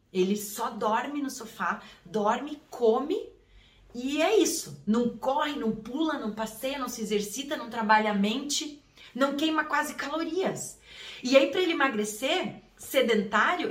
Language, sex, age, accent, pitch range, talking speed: Portuguese, female, 20-39, Brazilian, 215-330 Hz, 145 wpm